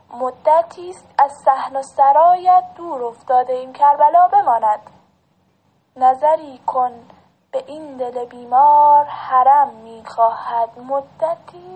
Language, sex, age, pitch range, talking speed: English, female, 10-29, 240-285 Hz, 95 wpm